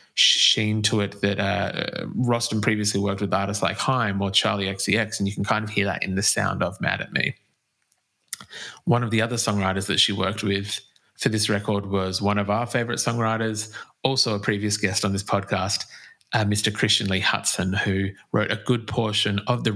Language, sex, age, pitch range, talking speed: English, male, 20-39, 100-120 Hz, 200 wpm